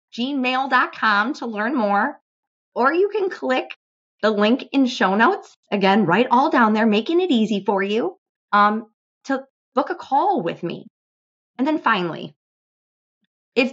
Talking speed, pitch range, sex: 150 wpm, 200-275 Hz, female